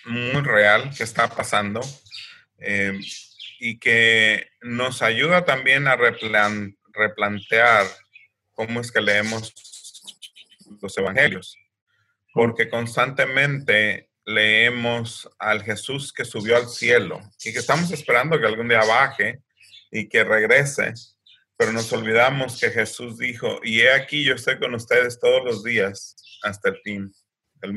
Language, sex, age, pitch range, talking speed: Spanish, male, 30-49, 105-125 Hz, 130 wpm